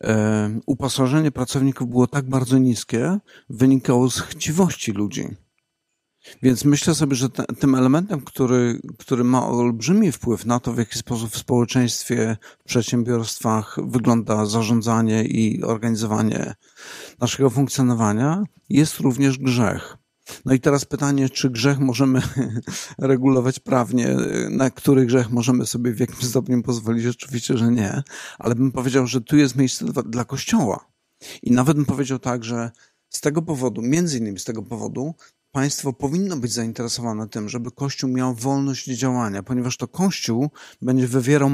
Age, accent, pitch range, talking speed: 50-69, native, 120-140 Hz, 145 wpm